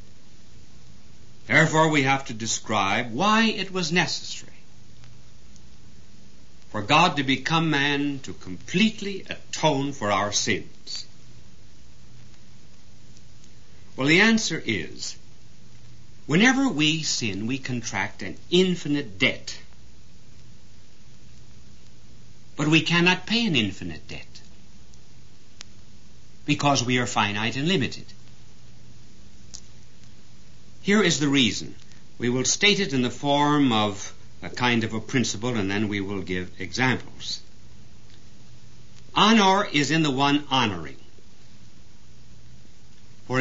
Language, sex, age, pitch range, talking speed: English, male, 60-79, 105-155 Hz, 105 wpm